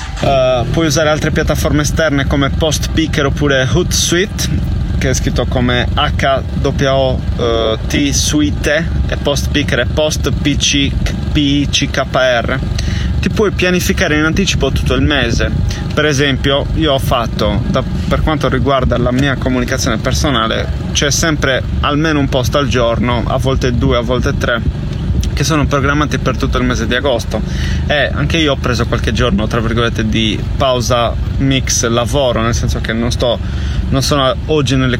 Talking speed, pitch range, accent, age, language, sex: 145 wpm, 110-135 Hz, native, 30-49, Italian, male